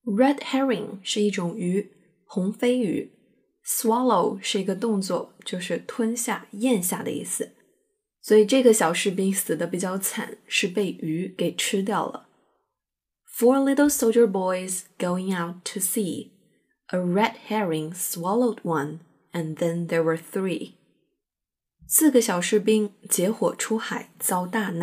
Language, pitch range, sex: Chinese, 180-230 Hz, female